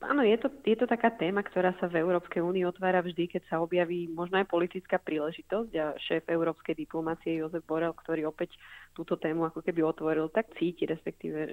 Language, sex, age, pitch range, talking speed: Slovak, female, 20-39, 160-175 Hz, 195 wpm